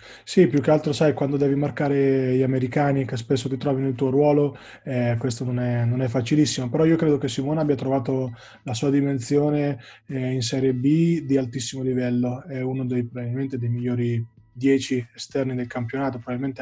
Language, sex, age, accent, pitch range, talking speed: Italian, male, 20-39, native, 130-145 Hz, 185 wpm